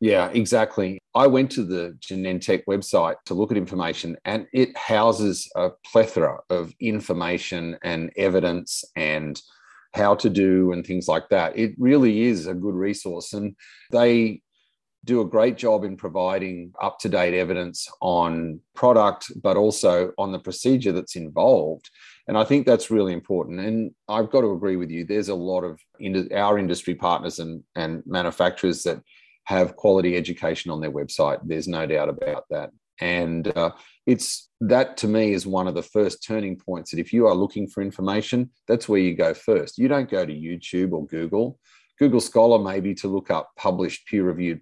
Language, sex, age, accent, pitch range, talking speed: English, male, 30-49, Australian, 90-110 Hz, 175 wpm